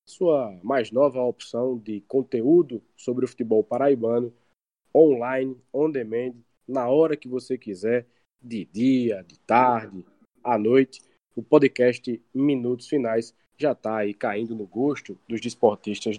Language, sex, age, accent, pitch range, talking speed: Portuguese, male, 20-39, Brazilian, 115-150 Hz, 130 wpm